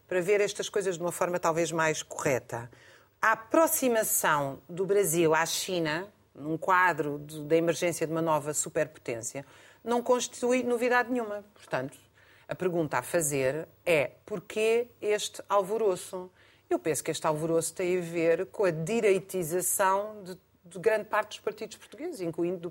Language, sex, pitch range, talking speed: Portuguese, female, 170-220 Hz, 150 wpm